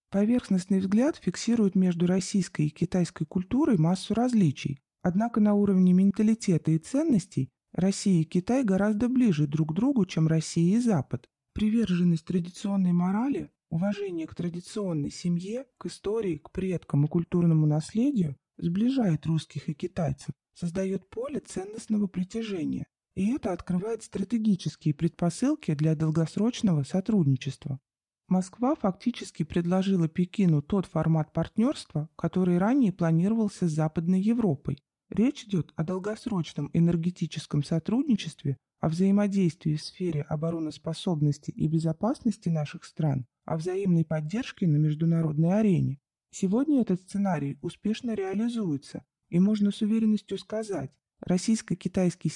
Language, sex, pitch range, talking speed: Russian, male, 160-210 Hz, 120 wpm